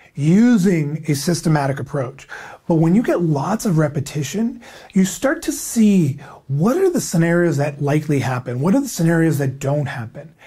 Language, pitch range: English, 145-200 Hz